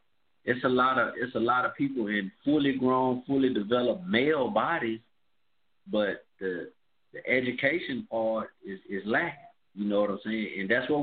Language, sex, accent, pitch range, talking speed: English, male, American, 125-165 Hz, 175 wpm